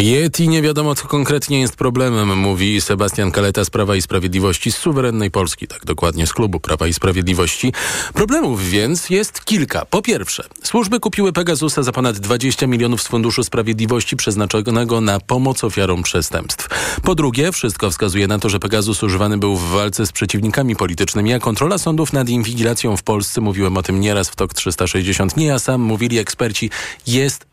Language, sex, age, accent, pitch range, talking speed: Polish, male, 40-59, native, 100-130 Hz, 175 wpm